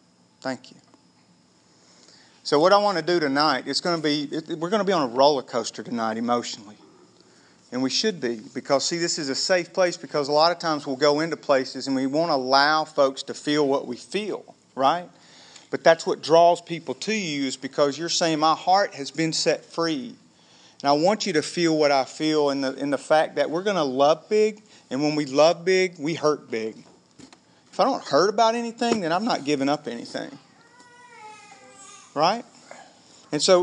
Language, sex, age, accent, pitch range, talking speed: English, male, 40-59, American, 140-185 Hz, 205 wpm